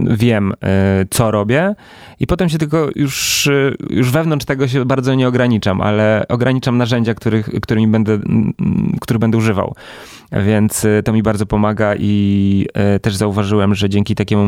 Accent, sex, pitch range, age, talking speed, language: native, male, 100-115 Hz, 20-39, 135 wpm, Polish